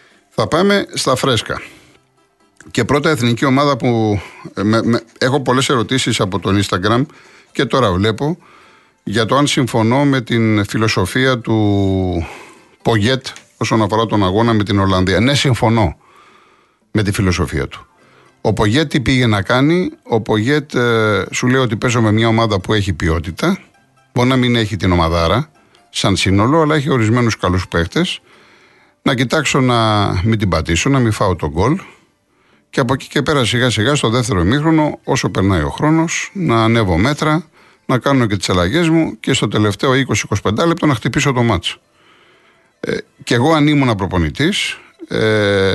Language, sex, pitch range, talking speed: Greek, male, 105-140 Hz, 160 wpm